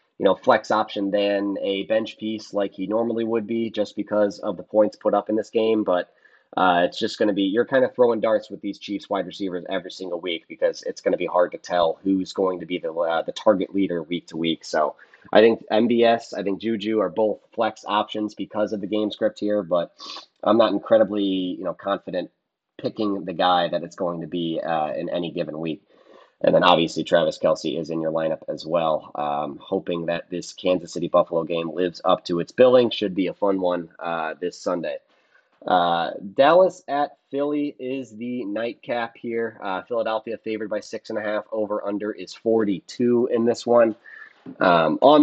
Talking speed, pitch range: 210 wpm, 95-115 Hz